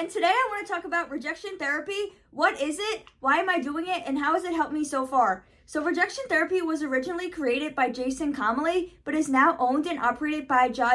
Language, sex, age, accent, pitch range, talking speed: English, female, 20-39, American, 245-315 Hz, 230 wpm